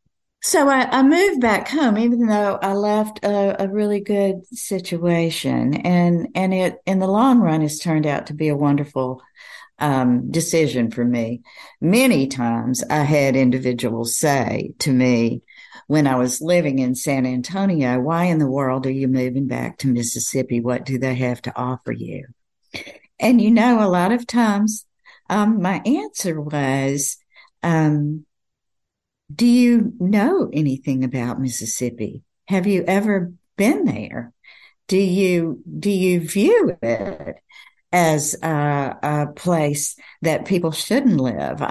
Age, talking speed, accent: 60-79, 145 wpm, American